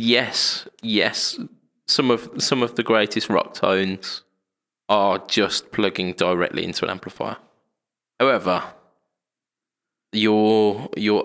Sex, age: male, 20-39